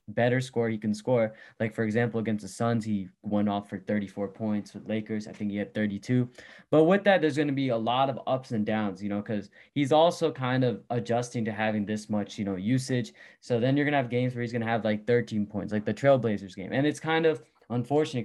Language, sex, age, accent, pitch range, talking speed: English, male, 20-39, American, 110-130 Hz, 250 wpm